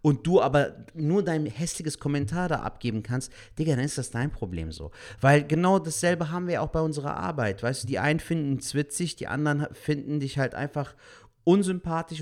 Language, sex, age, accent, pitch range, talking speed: German, male, 40-59, German, 120-160 Hz, 195 wpm